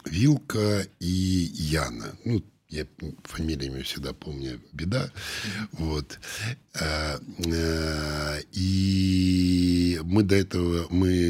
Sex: male